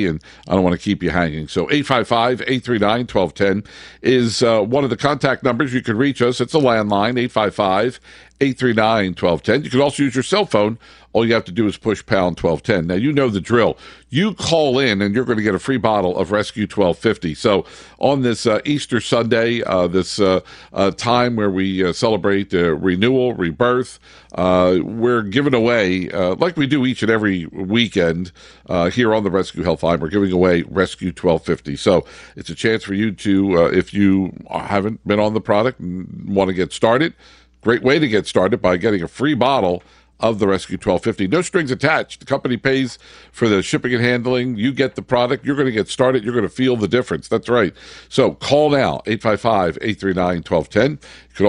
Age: 50-69